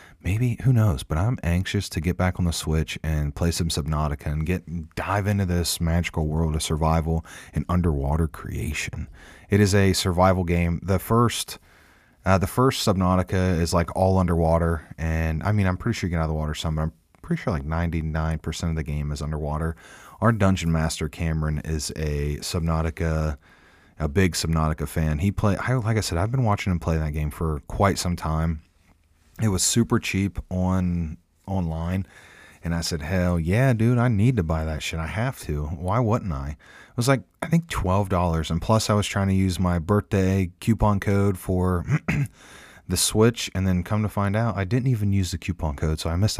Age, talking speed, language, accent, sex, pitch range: 30-49, 200 wpm, English, American, male, 80-100 Hz